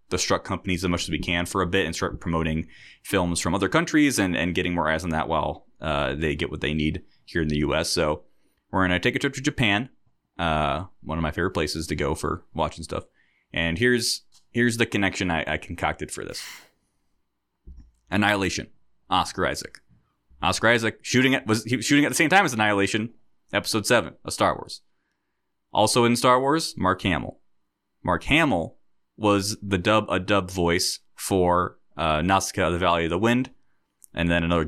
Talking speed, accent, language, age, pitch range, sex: 190 wpm, American, English, 20-39, 80-100 Hz, male